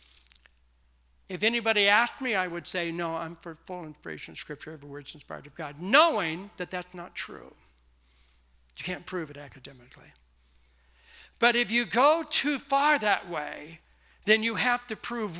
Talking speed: 165 wpm